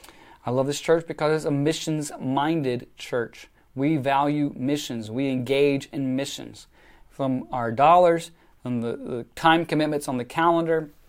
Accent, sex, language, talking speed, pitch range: American, male, English, 145 wpm, 125-160 Hz